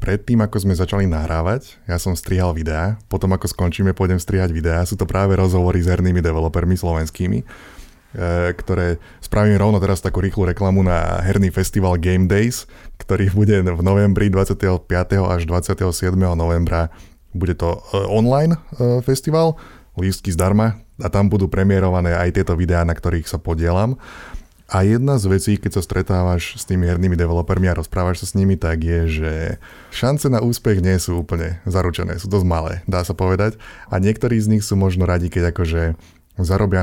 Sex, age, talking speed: male, 20-39, 165 wpm